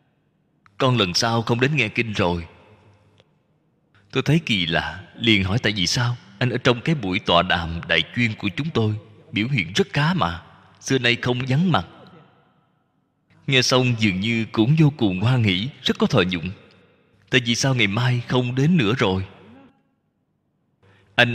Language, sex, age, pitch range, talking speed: Vietnamese, male, 20-39, 100-140 Hz, 175 wpm